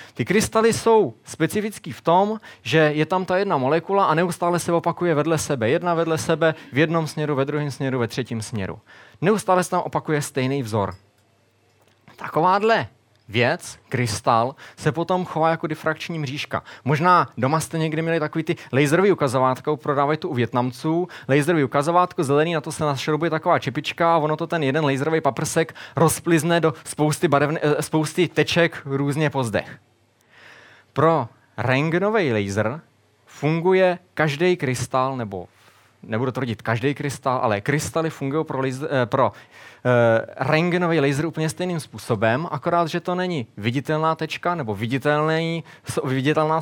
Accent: native